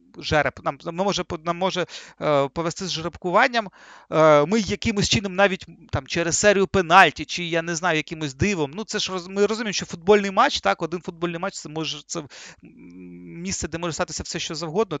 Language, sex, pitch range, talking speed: Ukrainian, male, 155-200 Hz, 180 wpm